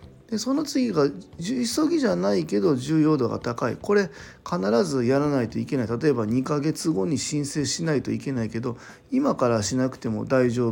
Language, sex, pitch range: Japanese, male, 120-165 Hz